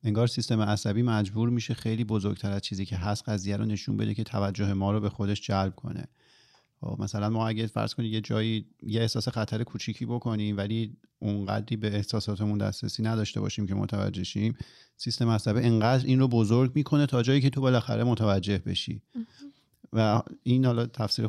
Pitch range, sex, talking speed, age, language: 105-130 Hz, male, 180 wpm, 40-59, Persian